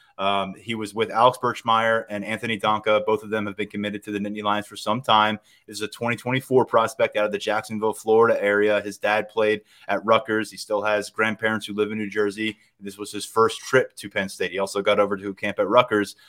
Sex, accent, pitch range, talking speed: male, American, 105-120 Hz, 235 wpm